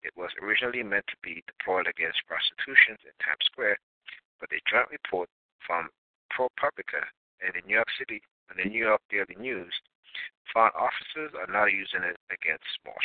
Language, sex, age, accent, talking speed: English, male, 60-79, American, 170 wpm